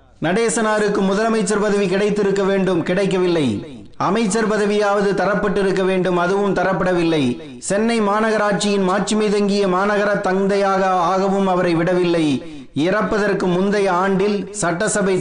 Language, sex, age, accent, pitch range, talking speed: Tamil, male, 30-49, native, 180-205 Hz, 65 wpm